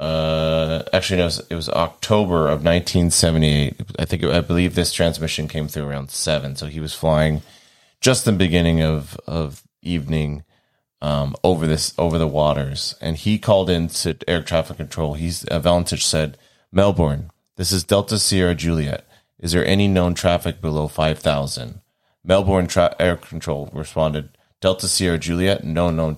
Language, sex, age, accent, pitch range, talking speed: English, male, 30-49, American, 80-90 Hz, 165 wpm